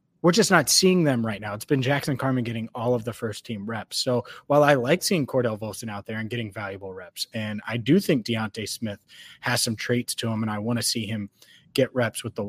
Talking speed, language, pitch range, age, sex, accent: 250 wpm, English, 115-145 Hz, 30-49, male, American